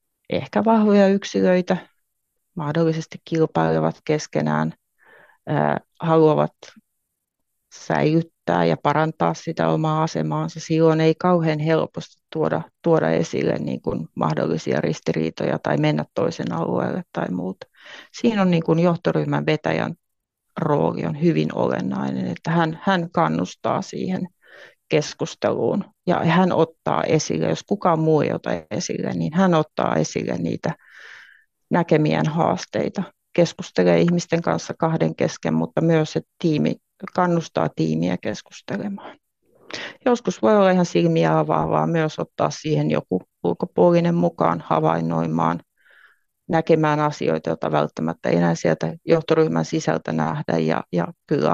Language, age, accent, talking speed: Finnish, 30-49, native, 115 wpm